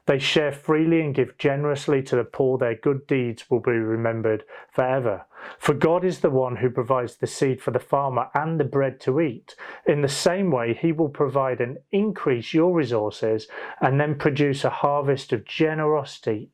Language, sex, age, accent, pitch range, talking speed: English, male, 30-49, British, 125-155 Hz, 185 wpm